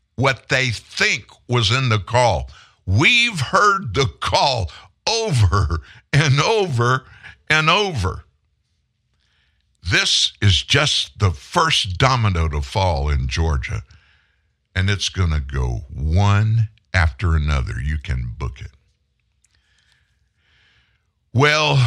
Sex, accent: male, American